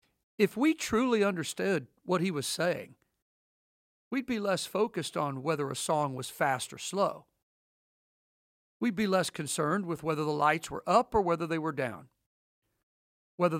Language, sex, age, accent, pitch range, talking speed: English, male, 50-69, American, 140-195 Hz, 160 wpm